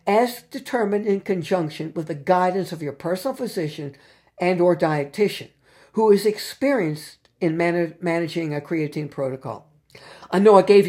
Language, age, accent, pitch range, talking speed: English, 60-79, American, 145-175 Hz, 150 wpm